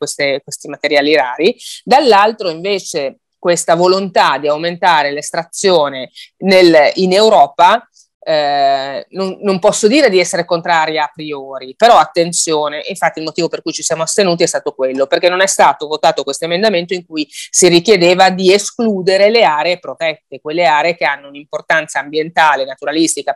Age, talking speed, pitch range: 30-49, 150 wpm, 150-185 Hz